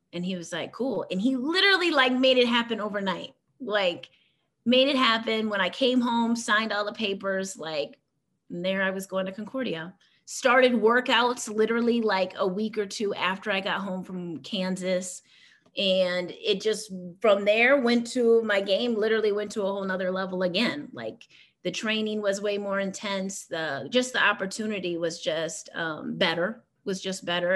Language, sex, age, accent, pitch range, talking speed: English, female, 30-49, American, 185-230 Hz, 175 wpm